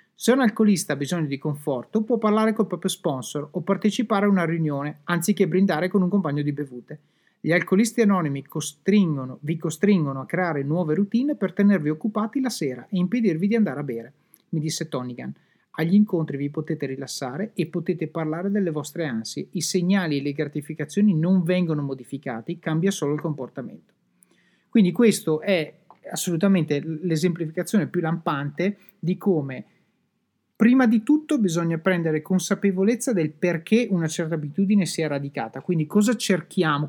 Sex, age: male, 30-49